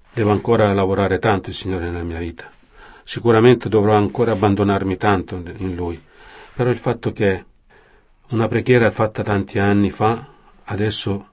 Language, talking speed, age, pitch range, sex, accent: Italian, 145 wpm, 40-59, 95-120 Hz, male, native